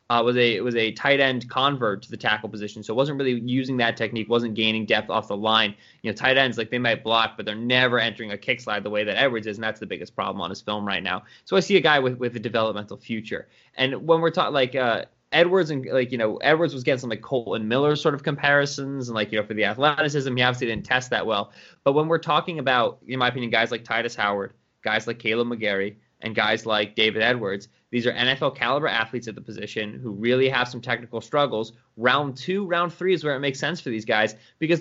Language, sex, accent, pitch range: English, male, American, 110-140 Hz